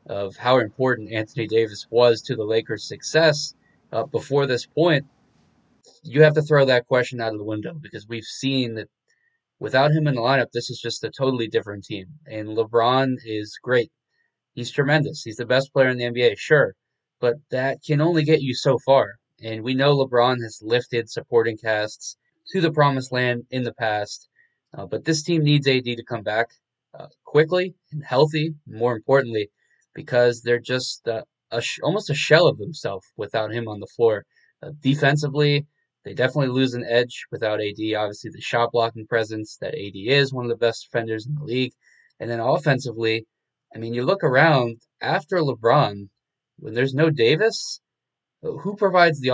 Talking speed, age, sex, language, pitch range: 180 wpm, 20-39, male, English, 115-145 Hz